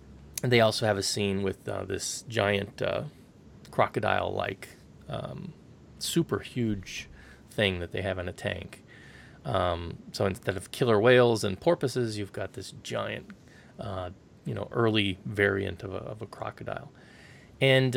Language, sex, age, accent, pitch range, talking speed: English, male, 30-49, American, 100-125 Hz, 150 wpm